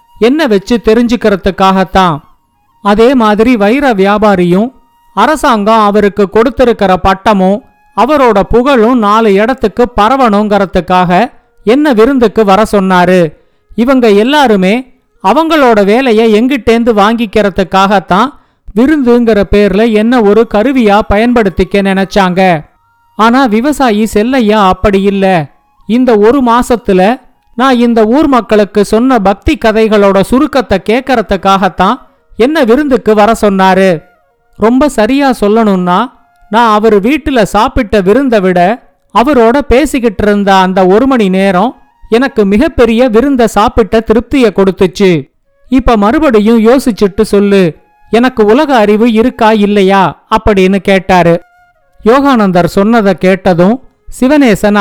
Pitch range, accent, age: 200-245 Hz, native, 50-69